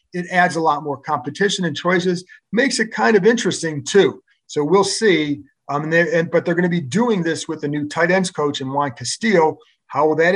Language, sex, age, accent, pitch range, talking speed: English, male, 40-59, American, 145-185 Hz, 230 wpm